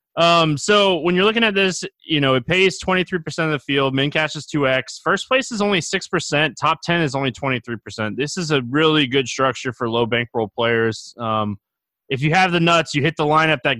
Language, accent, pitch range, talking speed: English, American, 115-160 Hz, 220 wpm